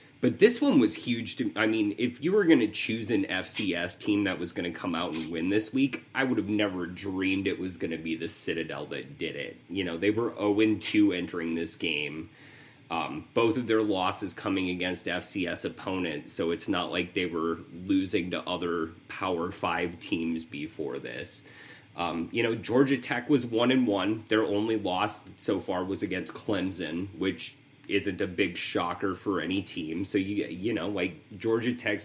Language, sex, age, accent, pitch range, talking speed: English, male, 30-49, American, 90-125 Hz, 195 wpm